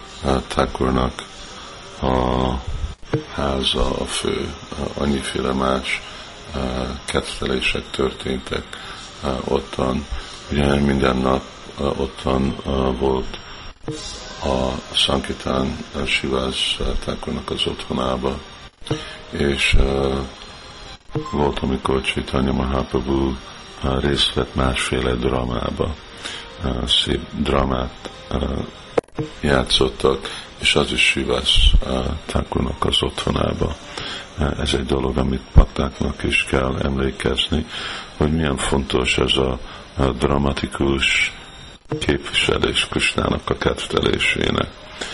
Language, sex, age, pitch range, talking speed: Hungarian, male, 50-69, 65-70 Hz, 75 wpm